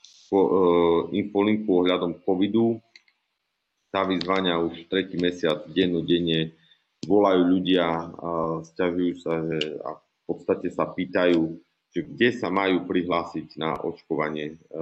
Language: Slovak